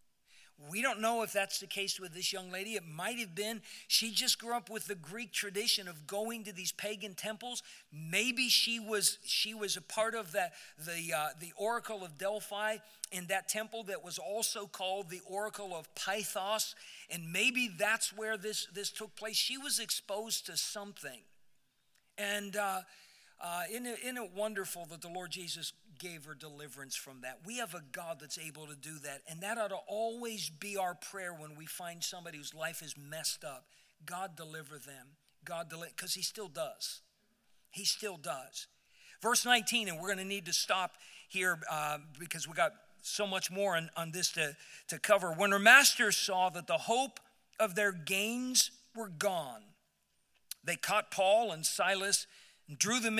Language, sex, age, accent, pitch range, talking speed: English, male, 50-69, American, 170-215 Hz, 185 wpm